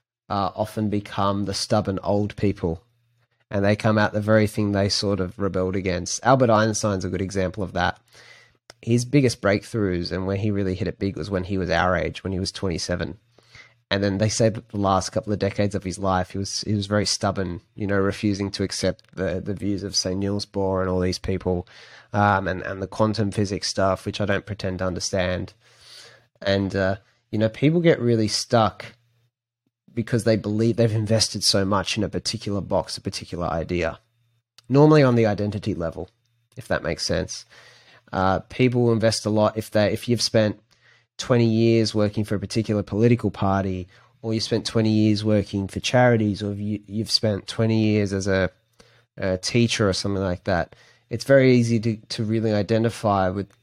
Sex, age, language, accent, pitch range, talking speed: male, 20-39, English, Australian, 95-115 Hz, 190 wpm